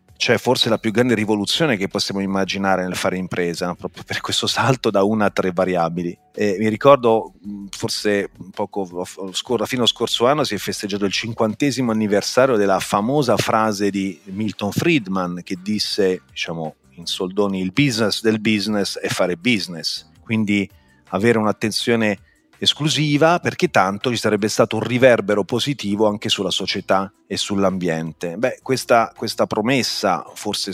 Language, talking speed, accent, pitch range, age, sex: Italian, 150 wpm, native, 95-110 Hz, 40-59, male